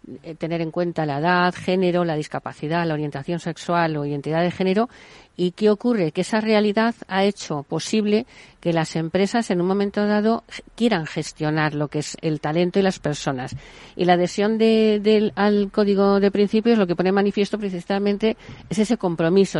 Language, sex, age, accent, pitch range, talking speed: Spanish, female, 50-69, Spanish, 165-205 Hz, 180 wpm